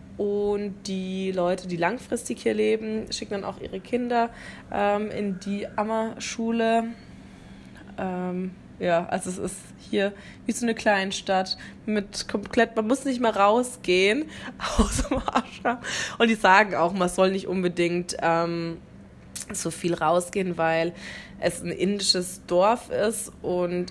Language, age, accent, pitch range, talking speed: German, 20-39, German, 170-205 Hz, 130 wpm